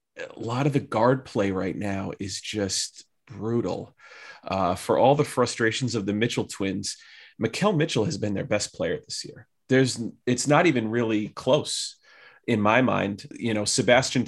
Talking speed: 170 wpm